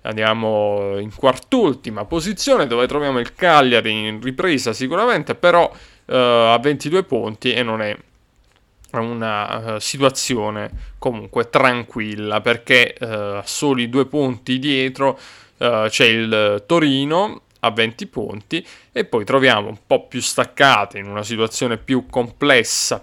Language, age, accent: Italian, 30-49, native